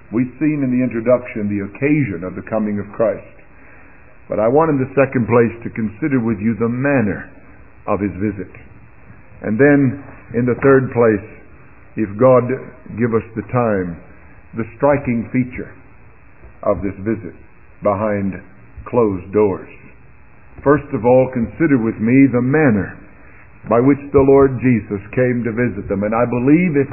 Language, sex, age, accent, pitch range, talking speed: English, male, 50-69, American, 105-140 Hz, 155 wpm